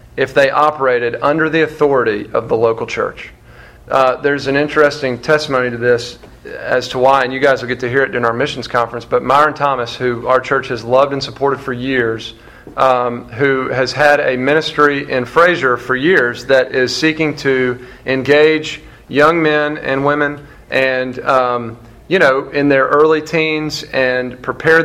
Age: 40-59